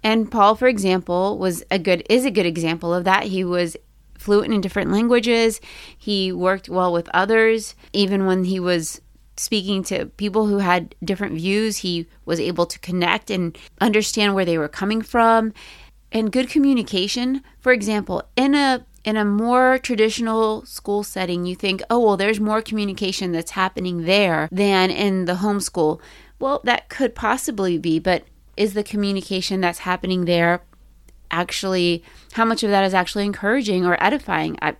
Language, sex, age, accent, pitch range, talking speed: English, female, 30-49, American, 185-220 Hz, 165 wpm